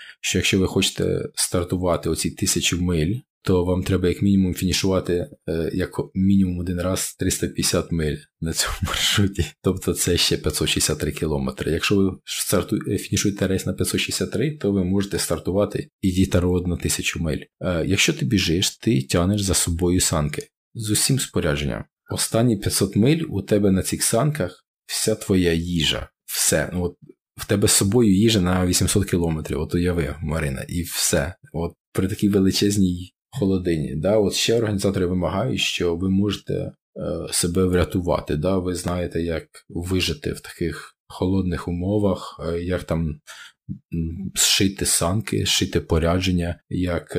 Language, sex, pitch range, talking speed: Ukrainian, male, 85-95 Hz, 150 wpm